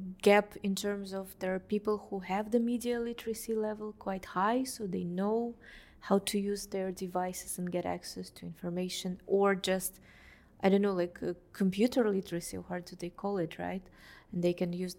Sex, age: female, 20-39